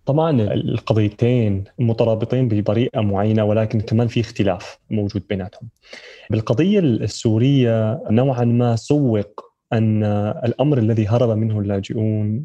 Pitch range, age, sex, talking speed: 110-130 Hz, 20-39, male, 105 wpm